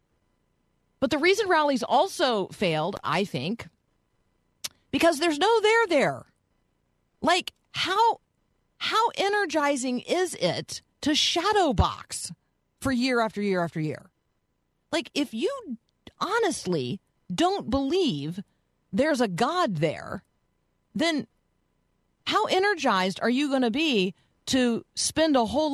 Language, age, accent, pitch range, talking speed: English, 40-59, American, 170-275 Hz, 115 wpm